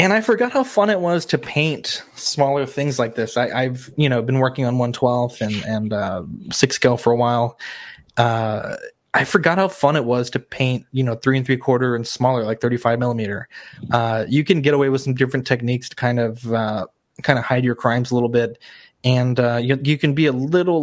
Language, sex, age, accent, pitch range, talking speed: English, male, 20-39, American, 120-140 Hz, 220 wpm